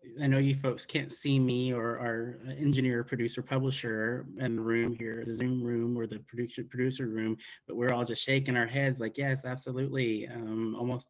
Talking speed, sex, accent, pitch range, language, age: 195 wpm, male, American, 110-125 Hz, English, 30-49